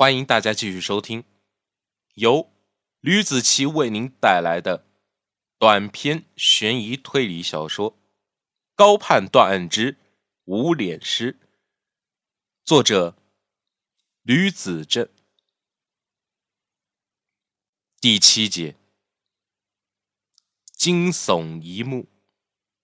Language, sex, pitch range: Chinese, male, 100-155 Hz